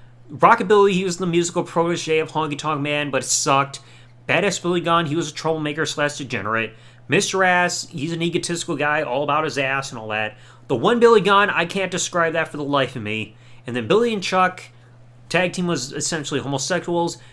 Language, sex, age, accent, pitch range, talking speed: English, male, 30-49, American, 125-180 Hz, 200 wpm